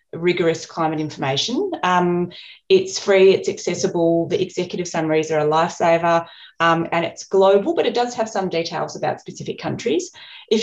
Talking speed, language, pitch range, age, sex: 160 wpm, English, 165-205 Hz, 30-49, female